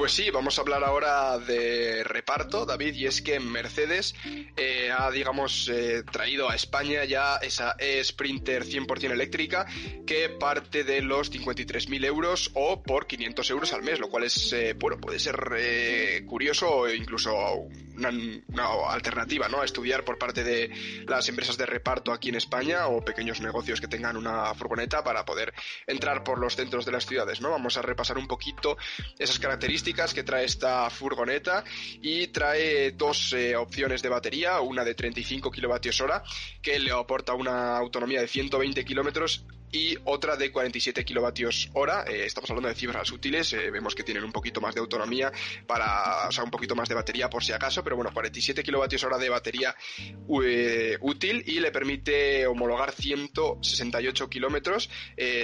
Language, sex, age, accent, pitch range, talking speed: Spanish, male, 20-39, Spanish, 120-140 Hz, 170 wpm